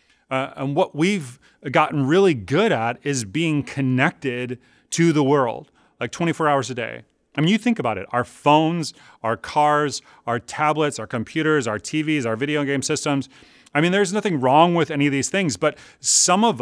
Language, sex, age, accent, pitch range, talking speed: English, male, 30-49, American, 130-170 Hz, 190 wpm